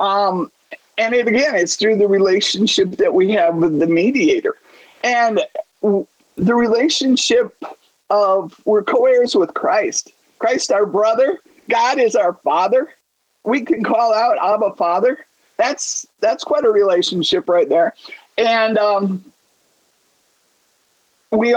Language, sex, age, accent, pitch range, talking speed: English, male, 50-69, American, 205-300 Hz, 120 wpm